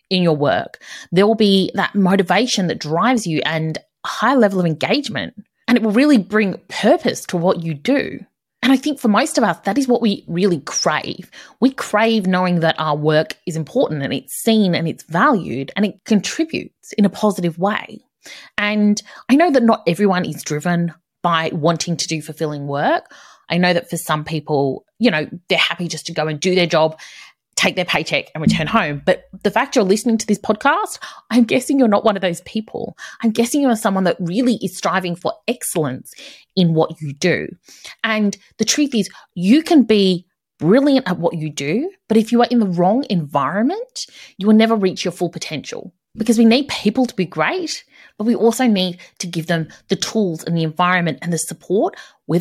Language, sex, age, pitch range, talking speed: English, female, 30-49, 165-225 Hz, 205 wpm